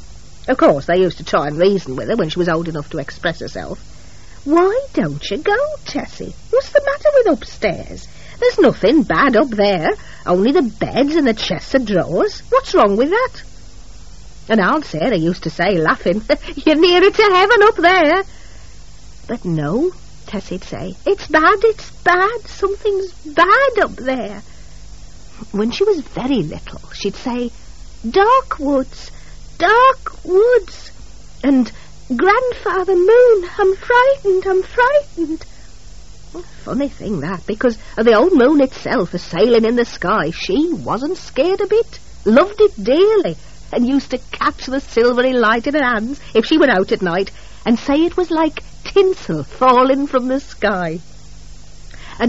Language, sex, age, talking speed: English, female, 50-69, 155 wpm